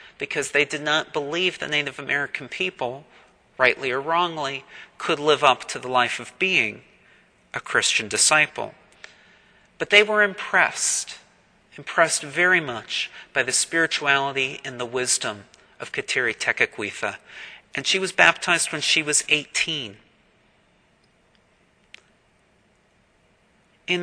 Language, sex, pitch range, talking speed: English, male, 130-180 Hz, 120 wpm